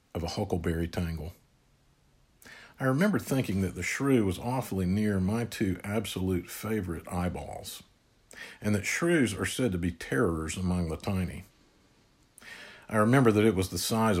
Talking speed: 150 wpm